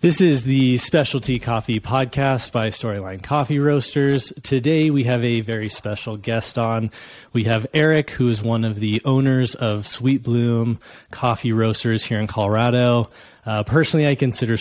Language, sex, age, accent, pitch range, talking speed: English, male, 20-39, American, 110-130 Hz, 160 wpm